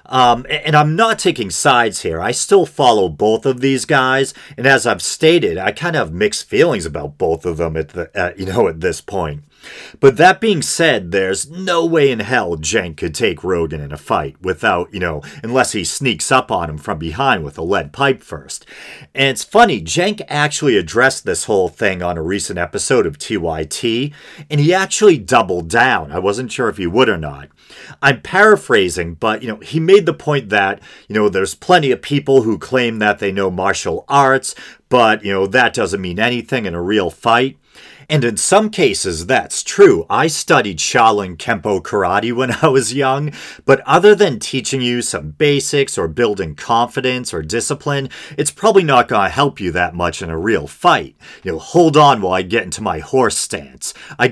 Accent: American